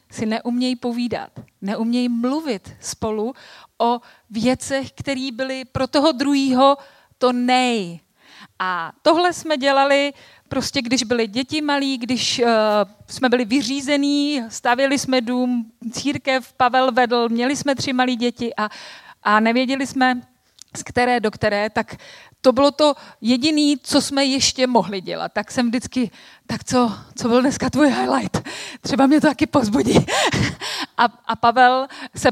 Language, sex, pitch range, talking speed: Czech, female, 230-275 Hz, 145 wpm